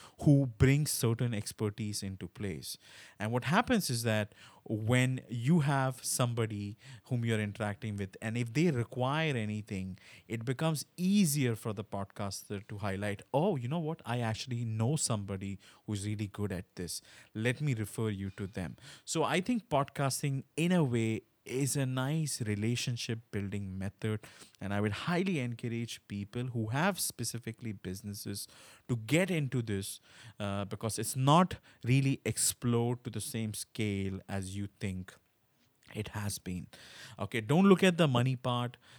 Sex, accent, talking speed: male, Indian, 155 wpm